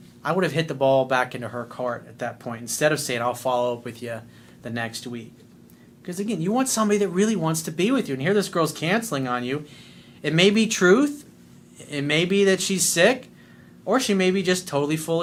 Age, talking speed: 30-49, 235 wpm